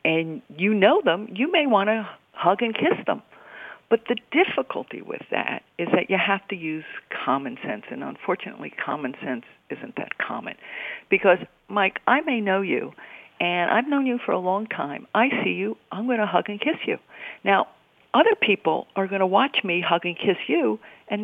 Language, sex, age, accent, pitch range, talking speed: English, female, 50-69, American, 150-235 Hz, 195 wpm